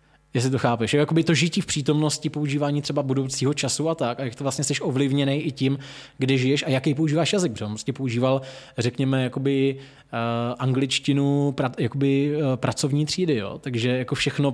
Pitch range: 130-150 Hz